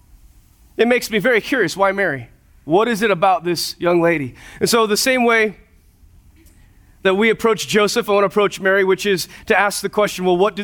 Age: 30-49